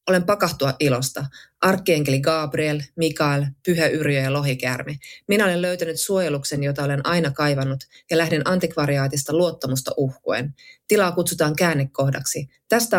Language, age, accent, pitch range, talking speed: Finnish, 20-39, native, 135-170 Hz, 125 wpm